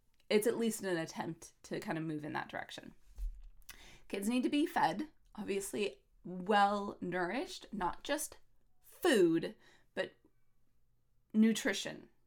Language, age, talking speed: English, 20-39, 120 wpm